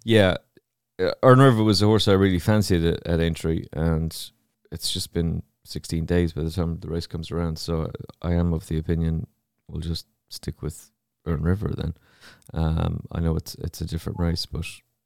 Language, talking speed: English, 190 wpm